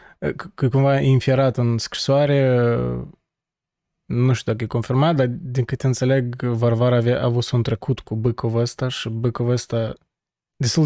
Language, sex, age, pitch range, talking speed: Romanian, male, 20-39, 120-140 Hz, 135 wpm